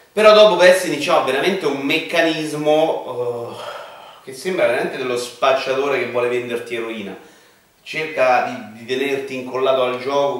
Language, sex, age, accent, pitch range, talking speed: Italian, male, 30-49, native, 115-155 Hz, 150 wpm